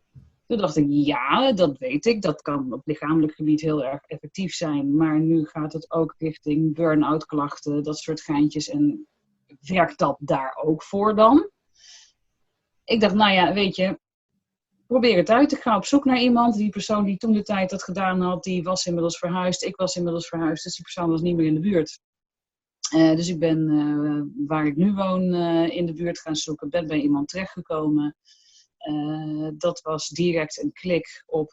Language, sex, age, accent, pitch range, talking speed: Dutch, female, 40-59, Dutch, 150-185 Hz, 190 wpm